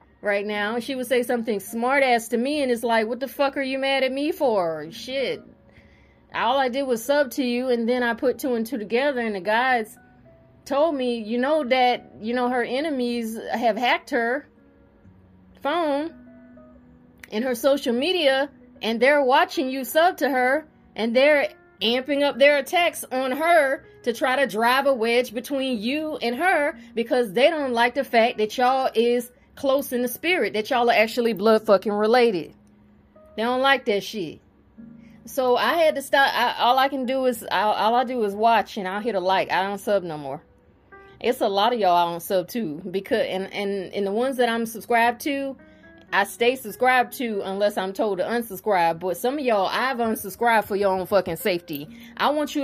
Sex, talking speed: female, 200 wpm